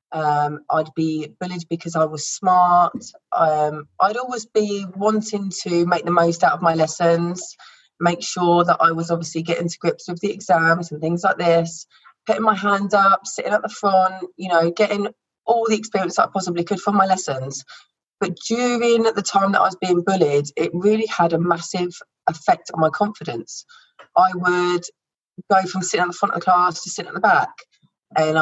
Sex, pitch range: female, 160-200 Hz